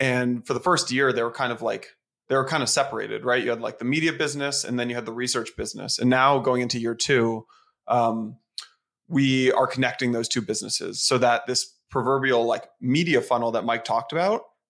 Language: English